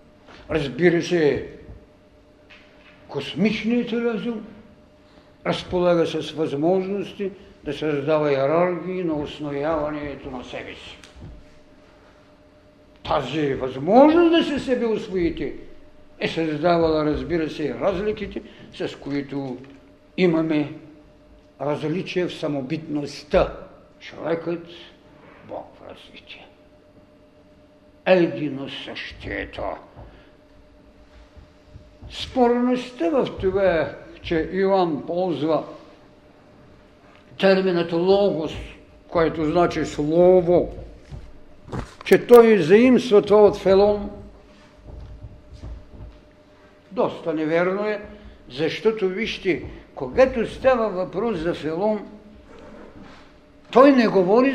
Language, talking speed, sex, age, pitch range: Bulgarian, 75 wpm, male, 60-79, 155-210 Hz